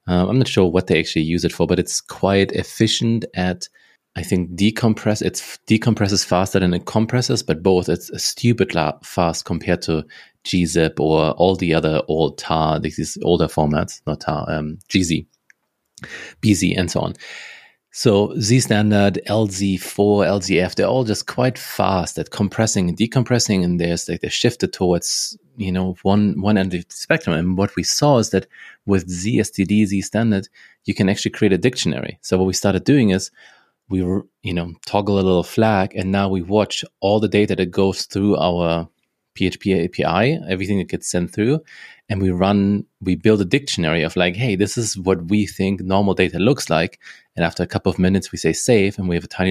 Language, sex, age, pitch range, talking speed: English, male, 30-49, 90-110 Hz, 195 wpm